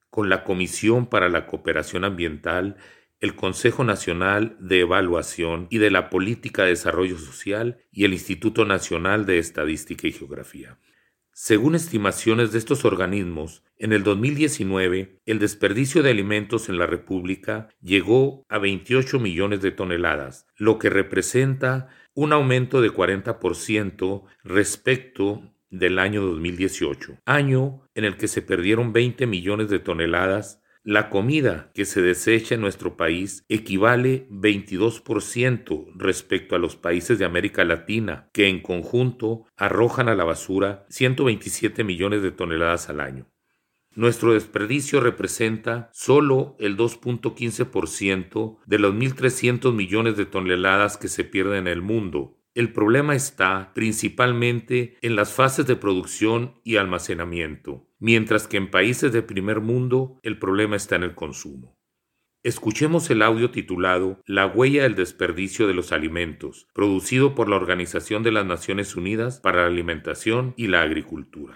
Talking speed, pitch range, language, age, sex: 140 wpm, 95-120 Hz, Spanish, 40-59, male